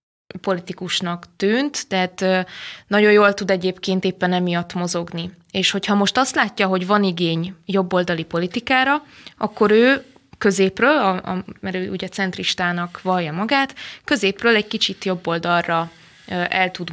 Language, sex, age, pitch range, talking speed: Hungarian, female, 20-39, 175-200 Hz, 135 wpm